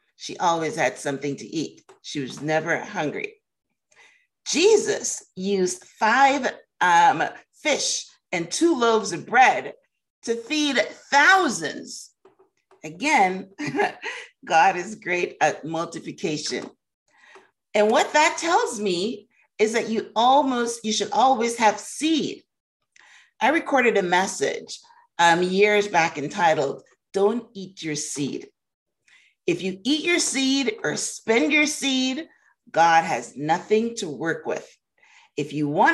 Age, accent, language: 40-59, American, English